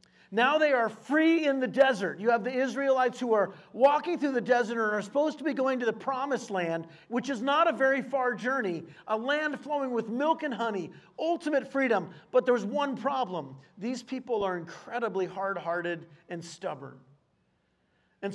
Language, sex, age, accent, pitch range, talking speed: English, male, 40-59, American, 195-250 Hz, 180 wpm